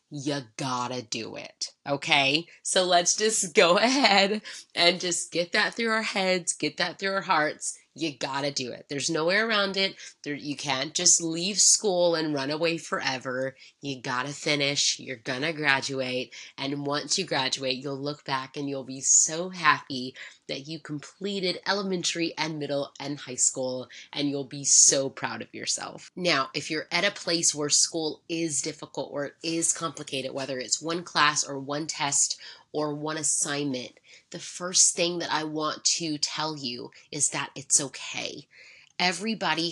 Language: English